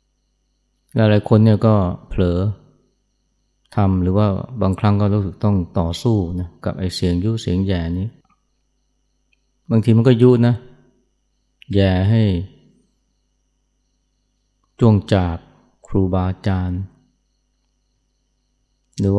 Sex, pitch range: male, 90-110 Hz